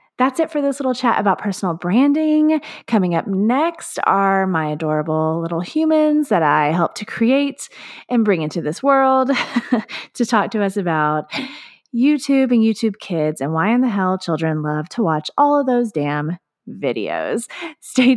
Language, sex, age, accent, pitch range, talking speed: English, female, 20-39, American, 190-265 Hz, 170 wpm